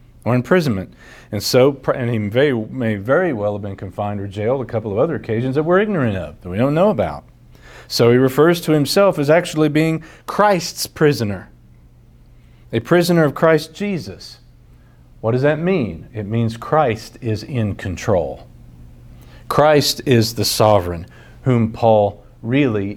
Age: 40-59